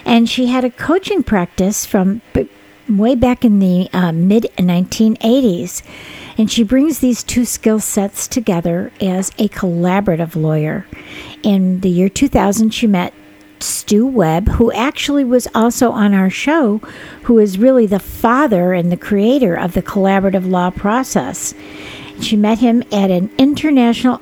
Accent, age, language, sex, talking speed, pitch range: American, 60-79, English, female, 145 wpm, 185-235 Hz